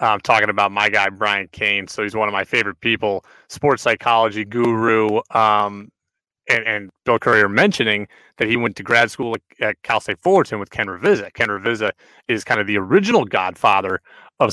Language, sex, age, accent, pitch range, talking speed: English, male, 30-49, American, 105-130 Hz, 195 wpm